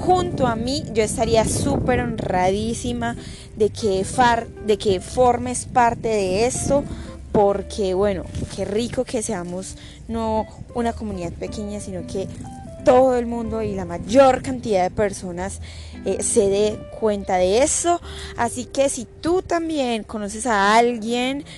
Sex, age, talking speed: female, 20-39, 140 wpm